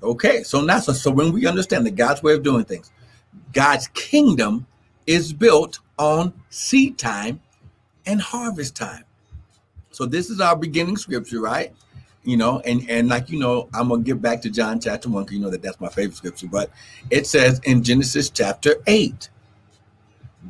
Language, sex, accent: English, male, American